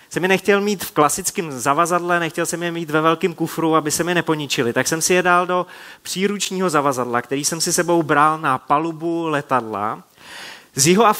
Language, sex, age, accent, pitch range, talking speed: Czech, male, 30-49, native, 140-175 Hz, 190 wpm